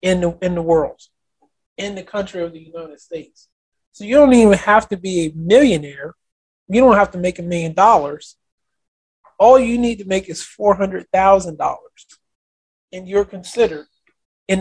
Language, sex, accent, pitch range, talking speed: English, male, American, 170-205 Hz, 165 wpm